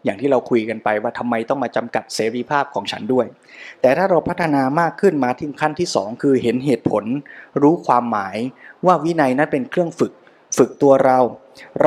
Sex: male